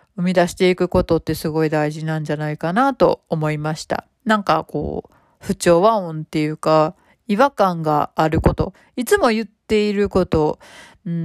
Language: Japanese